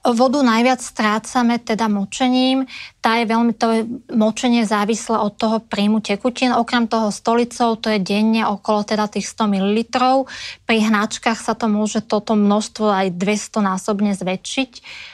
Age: 20-39